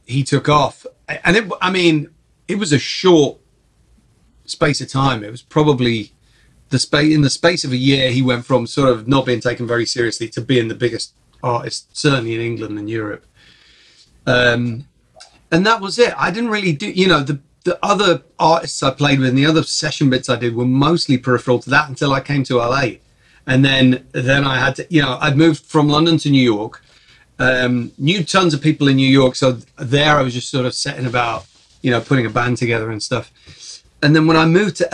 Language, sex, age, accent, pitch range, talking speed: English, male, 40-59, British, 120-150 Hz, 215 wpm